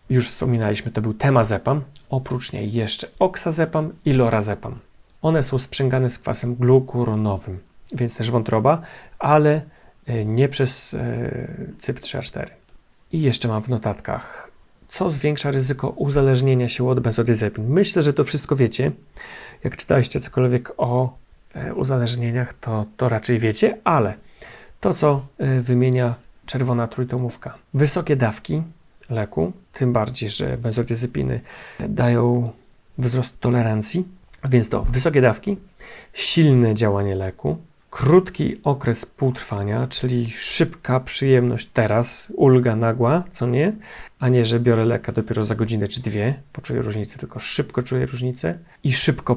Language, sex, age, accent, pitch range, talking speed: Polish, male, 40-59, native, 115-135 Hz, 125 wpm